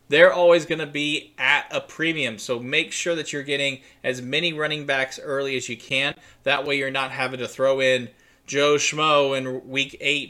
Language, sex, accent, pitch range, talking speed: English, male, American, 130-170 Hz, 205 wpm